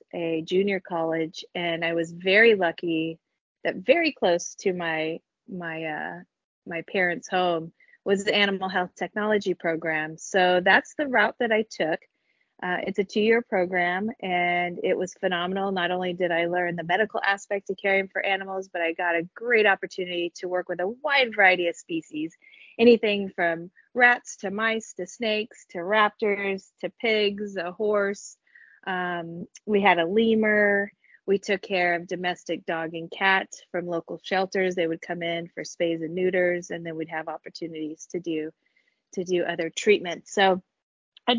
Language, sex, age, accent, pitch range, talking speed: English, female, 30-49, American, 175-210 Hz, 170 wpm